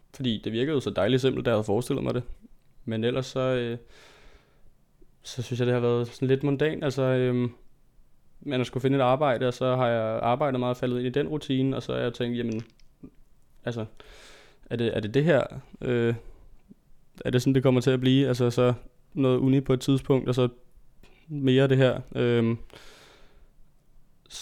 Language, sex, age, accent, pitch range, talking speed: Danish, male, 20-39, native, 115-130 Hz, 195 wpm